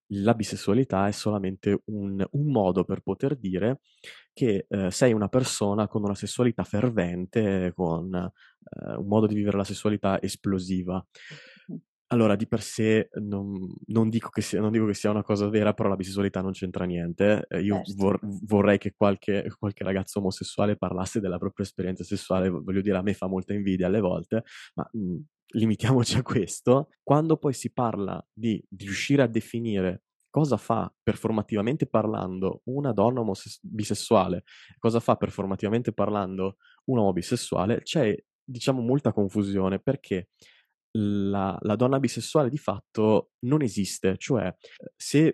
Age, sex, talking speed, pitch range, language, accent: 20-39, male, 145 wpm, 95-115 Hz, Italian, native